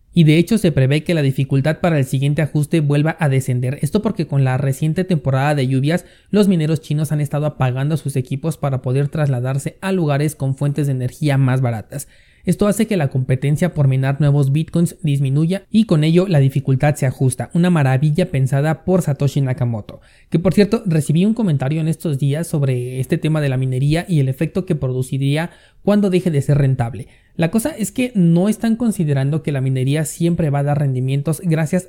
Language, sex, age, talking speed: Spanish, male, 30-49, 200 wpm